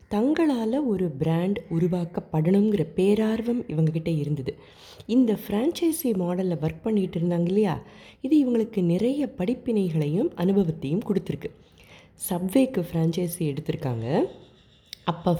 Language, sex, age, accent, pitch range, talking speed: Tamil, female, 20-39, native, 165-230 Hz, 95 wpm